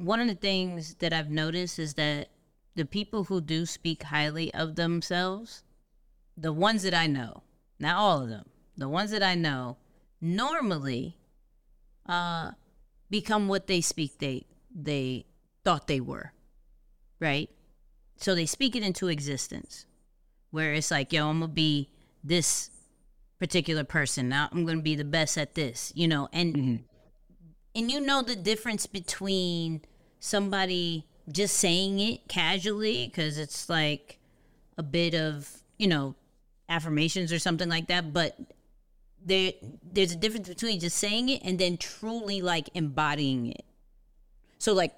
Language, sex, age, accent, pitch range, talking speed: English, female, 30-49, American, 150-185 Hz, 150 wpm